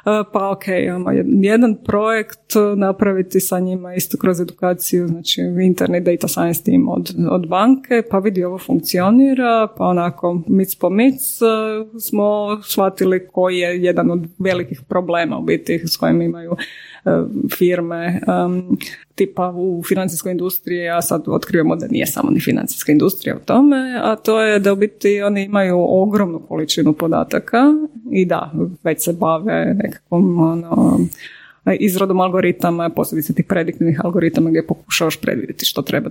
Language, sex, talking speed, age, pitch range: Croatian, female, 150 wpm, 30-49, 175-210 Hz